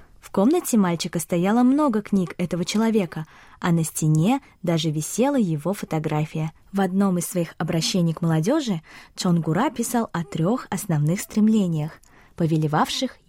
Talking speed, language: 130 wpm, Russian